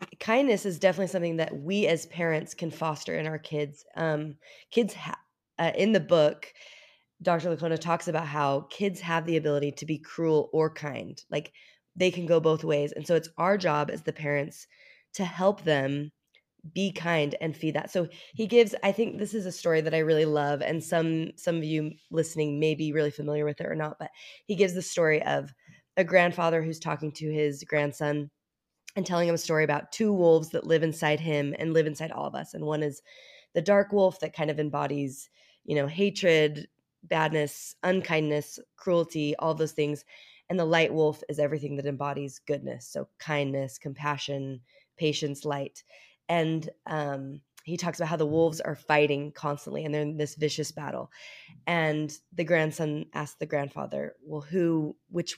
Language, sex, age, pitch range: English, female, 20-39, 150-170 Hz